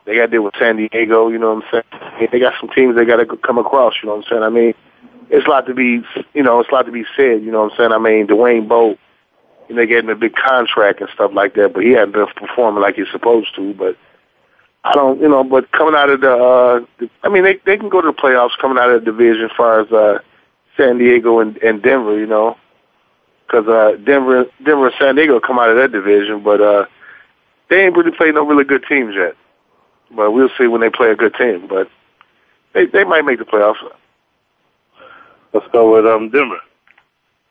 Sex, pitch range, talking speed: male, 110-130 Hz, 240 wpm